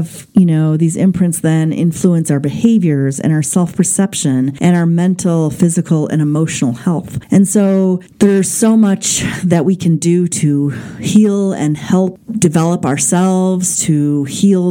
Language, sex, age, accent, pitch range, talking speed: English, female, 40-59, American, 150-180 Hz, 145 wpm